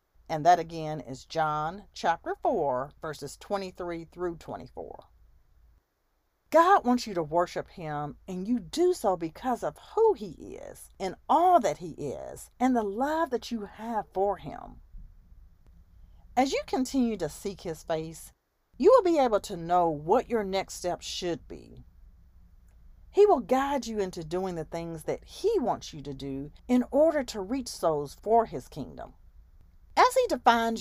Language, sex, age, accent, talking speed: English, female, 40-59, American, 160 wpm